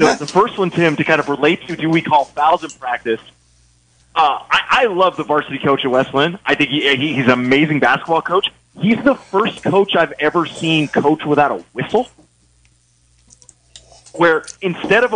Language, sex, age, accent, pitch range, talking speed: English, male, 30-49, American, 130-170 Hz, 195 wpm